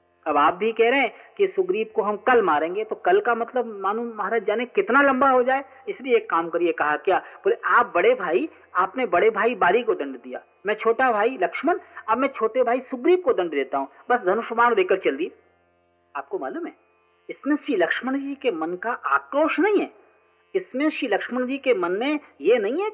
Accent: native